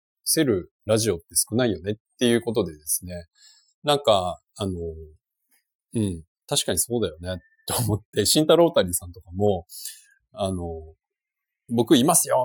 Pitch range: 90-130 Hz